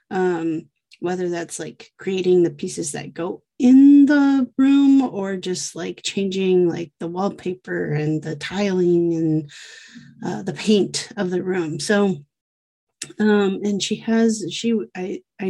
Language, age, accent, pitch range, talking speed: English, 30-49, American, 170-210 Hz, 145 wpm